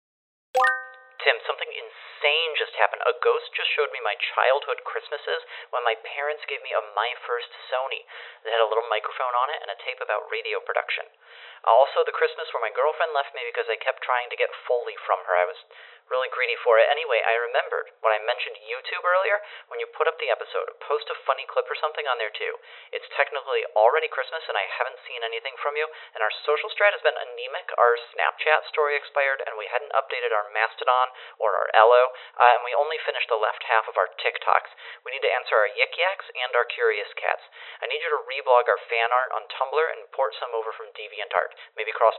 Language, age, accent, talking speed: English, 30-49, American, 215 wpm